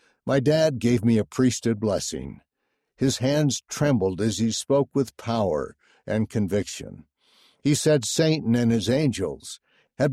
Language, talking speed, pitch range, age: English, 140 wpm, 110-140 Hz, 60-79